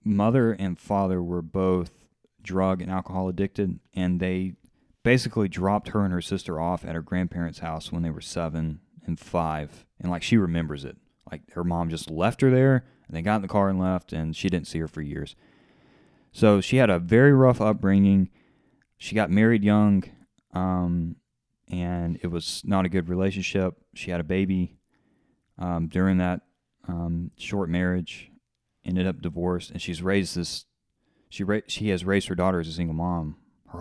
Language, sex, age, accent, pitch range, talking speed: English, male, 30-49, American, 85-100 Hz, 180 wpm